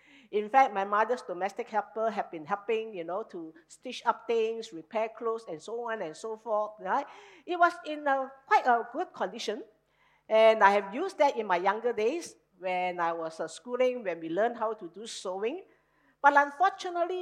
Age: 50-69